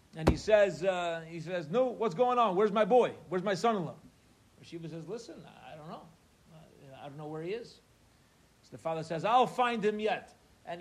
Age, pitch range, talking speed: 40-59, 165-215 Hz, 205 wpm